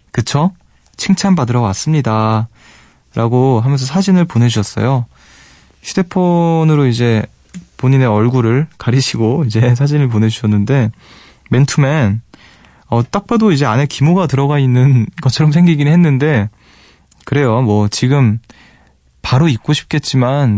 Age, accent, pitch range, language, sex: 20-39, native, 105-145 Hz, Korean, male